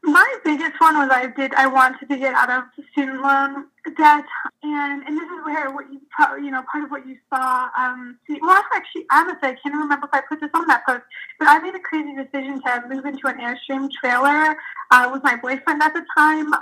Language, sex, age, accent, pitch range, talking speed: English, female, 10-29, American, 260-300 Hz, 230 wpm